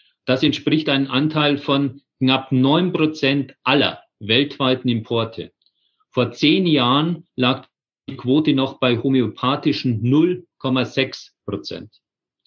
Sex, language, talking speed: male, German, 105 wpm